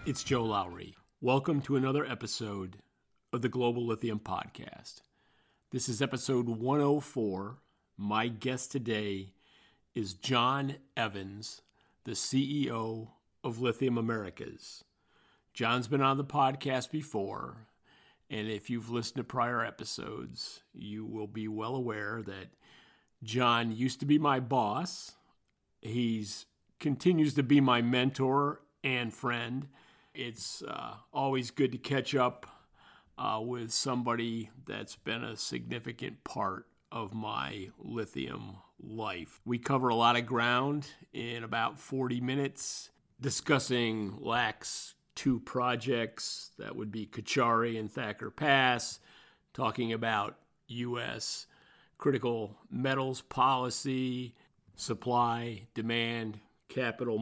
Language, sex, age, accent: English, male, 40-59, American